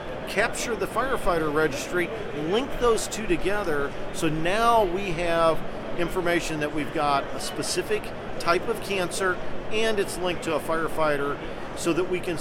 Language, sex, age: English, male, 40-59